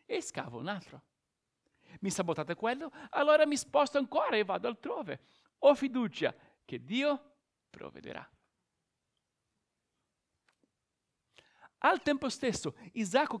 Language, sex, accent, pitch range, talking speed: Italian, male, native, 175-250 Hz, 105 wpm